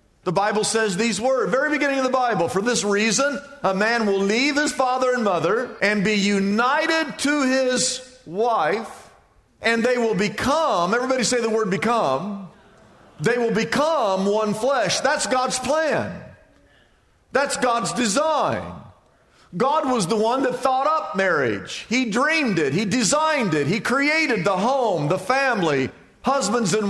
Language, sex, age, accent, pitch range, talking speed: English, male, 50-69, American, 205-270 Hz, 155 wpm